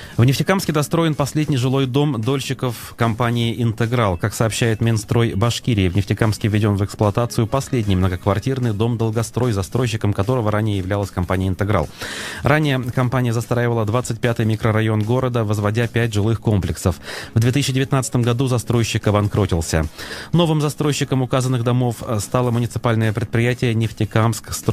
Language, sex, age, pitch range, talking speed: Russian, male, 30-49, 110-130 Hz, 120 wpm